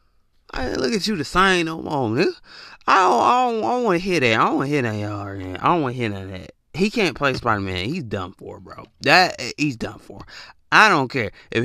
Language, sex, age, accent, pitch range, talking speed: English, male, 30-49, American, 105-165 Hz, 265 wpm